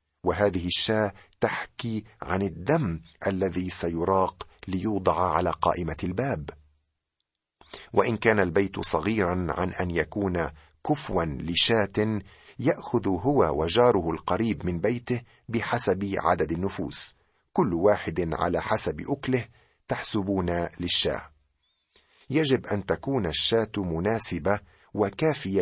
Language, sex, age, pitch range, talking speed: Arabic, male, 50-69, 85-110 Hz, 100 wpm